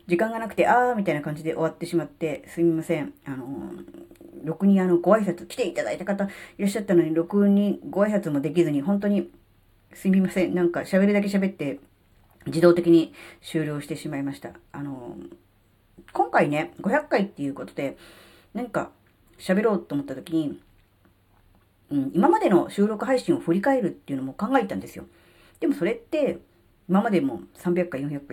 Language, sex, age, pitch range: Japanese, female, 40-59, 140-205 Hz